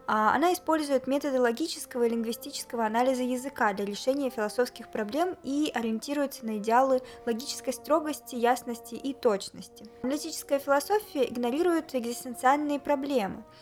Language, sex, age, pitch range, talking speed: Russian, female, 20-39, 230-280 Hz, 115 wpm